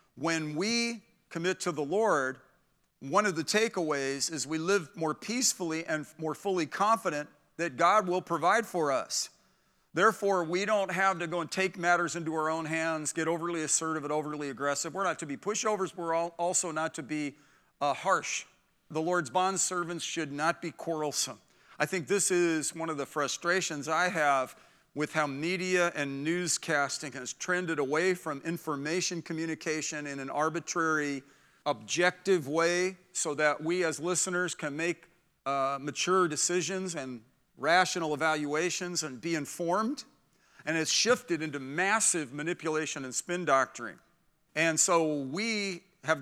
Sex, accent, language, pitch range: male, American, English, 150-180 Hz